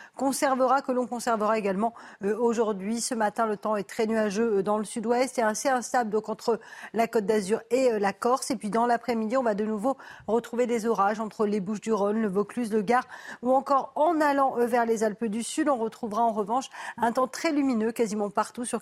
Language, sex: French, female